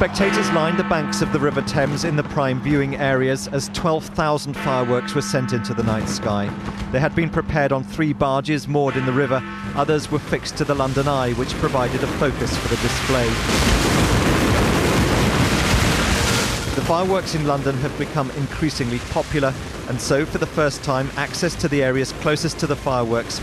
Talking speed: 175 wpm